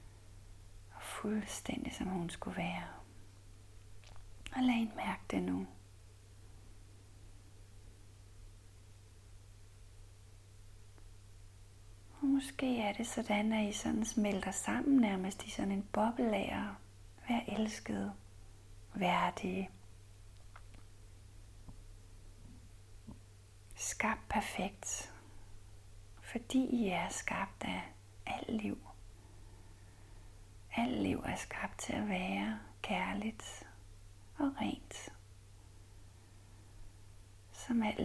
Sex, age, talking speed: female, 40-59, 80 wpm